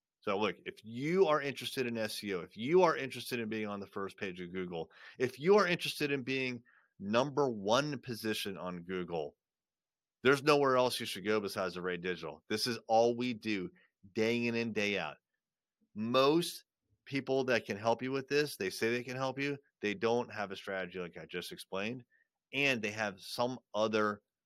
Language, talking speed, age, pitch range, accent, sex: English, 195 wpm, 30-49, 95-130 Hz, American, male